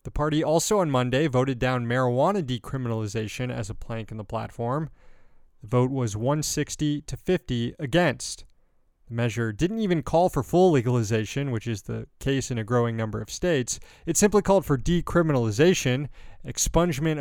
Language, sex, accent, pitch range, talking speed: English, male, American, 120-155 Hz, 160 wpm